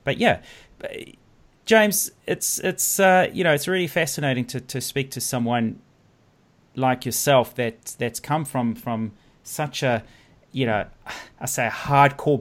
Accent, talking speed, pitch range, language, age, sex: Australian, 150 wpm, 110-135 Hz, English, 30-49, male